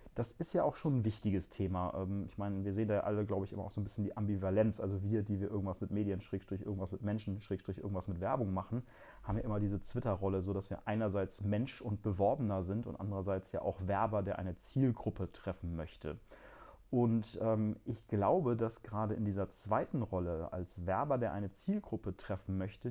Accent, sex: German, male